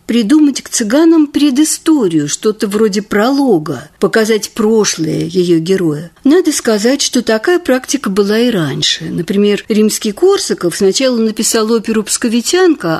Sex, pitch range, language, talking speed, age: female, 180-255 Hz, Russian, 120 wpm, 50-69